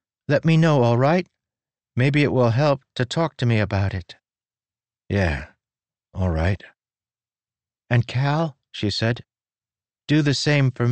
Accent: American